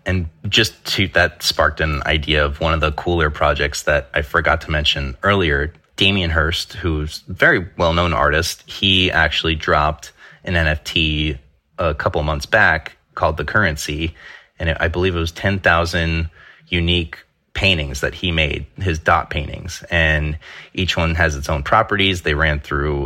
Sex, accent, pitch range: male, American, 80-95 Hz